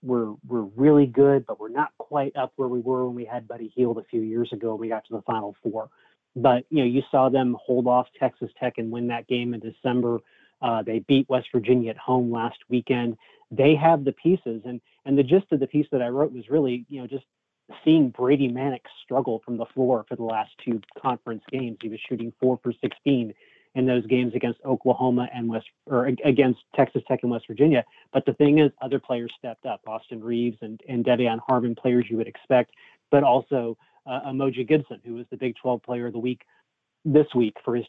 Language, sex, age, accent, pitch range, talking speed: English, male, 30-49, American, 120-140 Hz, 225 wpm